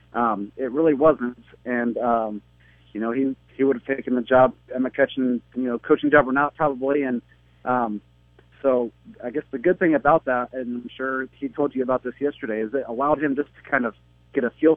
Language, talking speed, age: English, 225 wpm, 40-59